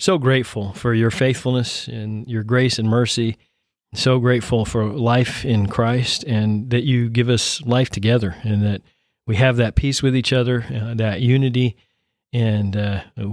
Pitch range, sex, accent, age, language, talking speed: 105-125 Hz, male, American, 40-59, English, 165 wpm